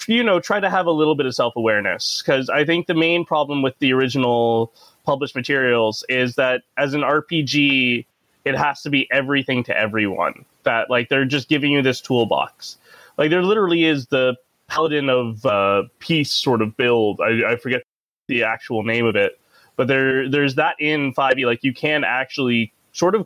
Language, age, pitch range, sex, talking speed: English, 20-39, 120-150 Hz, male, 190 wpm